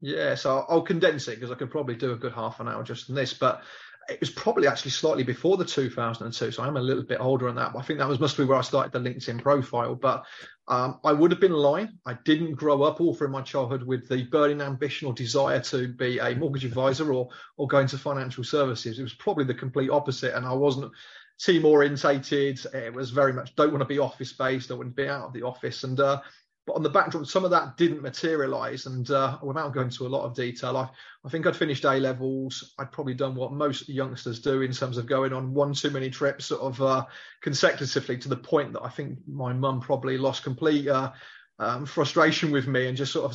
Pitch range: 130-145 Hz